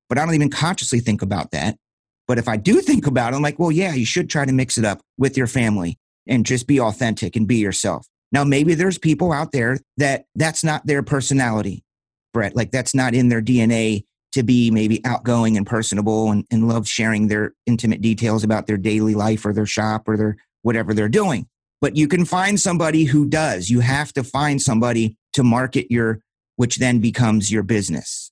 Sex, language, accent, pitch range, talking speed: male, English, American, 110-140 Hz, 210 wpm